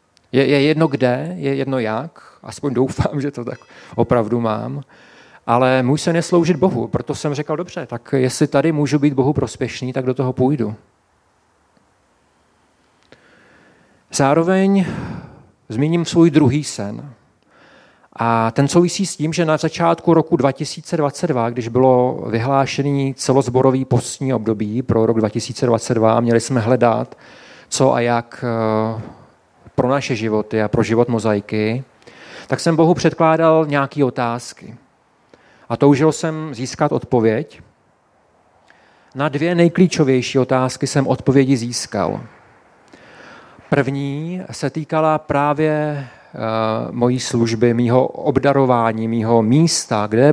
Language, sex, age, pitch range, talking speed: Czech, male, 40-59, 115-150 Hz, 120 wpm